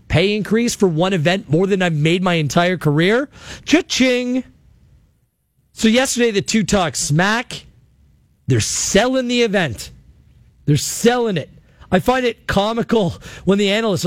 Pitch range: 180-235 Hz